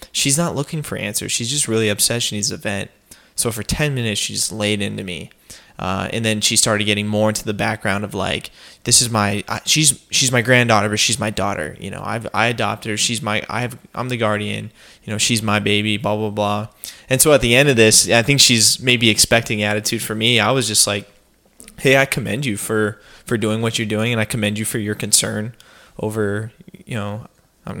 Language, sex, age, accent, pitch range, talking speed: English, male, 20-39, American, 105-120 Hz, 230 wpm